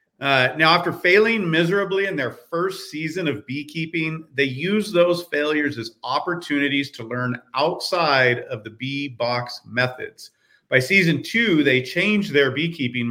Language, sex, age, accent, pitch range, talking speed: English, male, 40-59, American, 125-160 Hz, 145 wpm